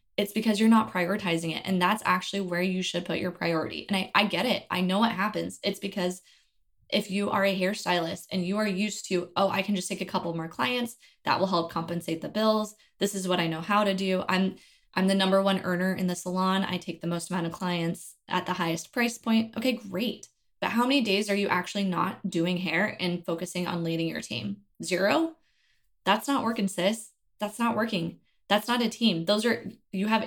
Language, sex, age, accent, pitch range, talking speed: English, female, 20-39, American, 175-205 Hz, 225 wpm